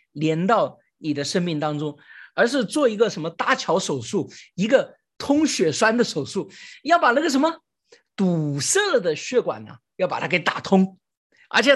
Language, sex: Chinese, male